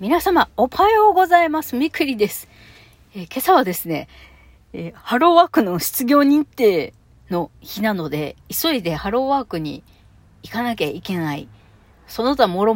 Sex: female